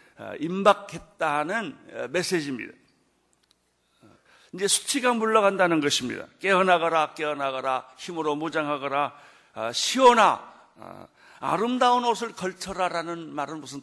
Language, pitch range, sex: Korean, 145-210 Hz, male